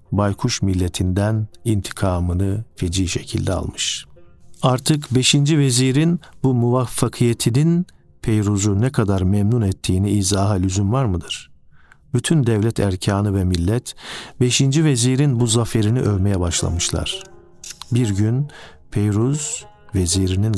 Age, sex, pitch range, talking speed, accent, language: 50-69, male, 100-125 Hz, 100 wpm, native, Turkish